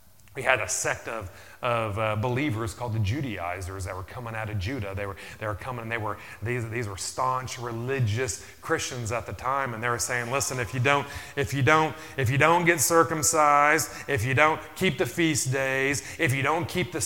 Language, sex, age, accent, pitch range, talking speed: English, male, 30-49, American, 115-180 Hz, 220 wpm